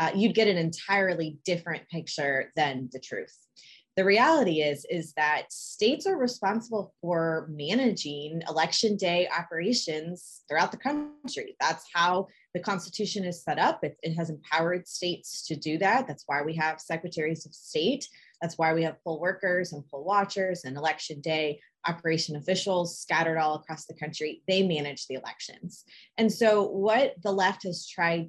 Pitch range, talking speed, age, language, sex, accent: 160-210 Hz, 165 wpm, 20-39, English, female, American